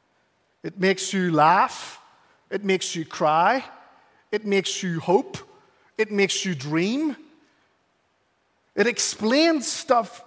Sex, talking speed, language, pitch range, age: male, 110 wpm, English, 175-255 Hz, 40-59